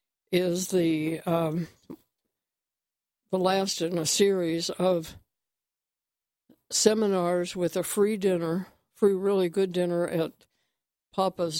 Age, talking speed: 60-79, 105 wpm